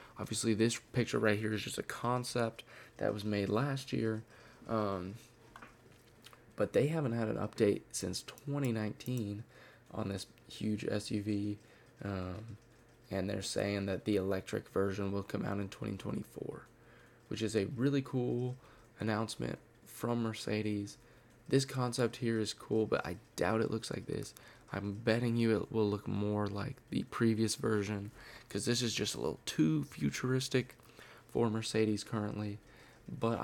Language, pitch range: English, 105-120 Hz